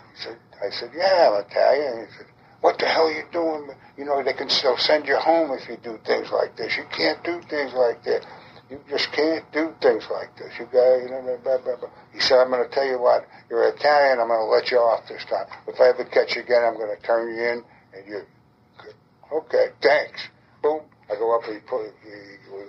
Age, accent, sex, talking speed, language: 60-79, American, male, 235 wpm, English